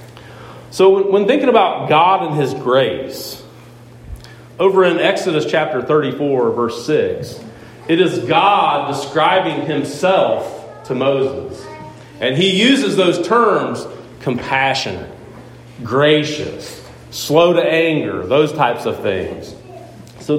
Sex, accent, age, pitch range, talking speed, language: male, American, 40-59, 120-165 Hz, 110 wpm, English